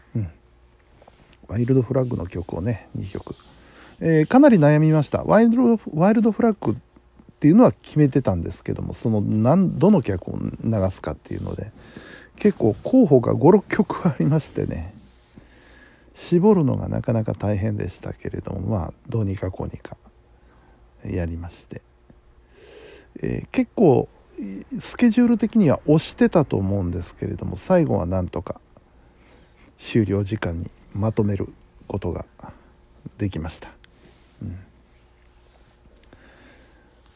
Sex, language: male, Japanese